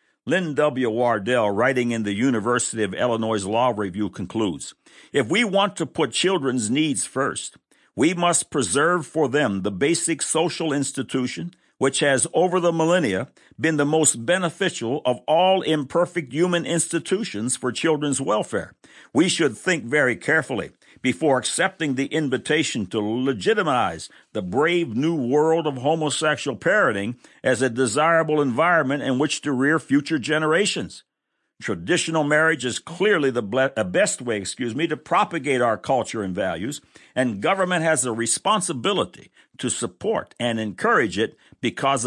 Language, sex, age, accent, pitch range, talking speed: English, male, 60-79, American, 120-165 Hz, 145 wpm